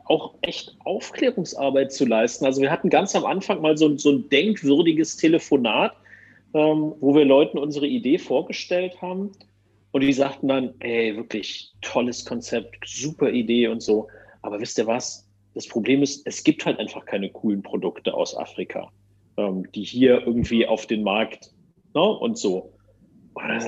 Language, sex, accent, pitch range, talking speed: German, male, German, 125-185 Hz, 155 wpm